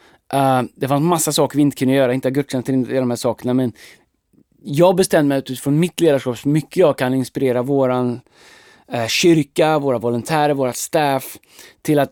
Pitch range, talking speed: 125-145 Hz, 180 wpm